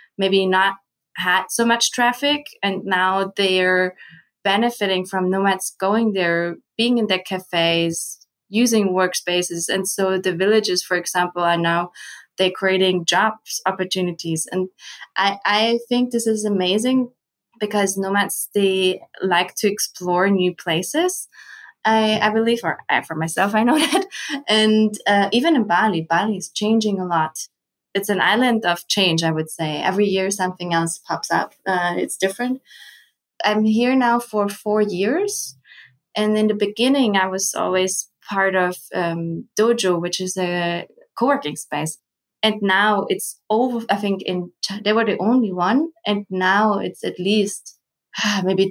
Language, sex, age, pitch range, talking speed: English, female, 20-39, 180-215 Hz, 155 wpm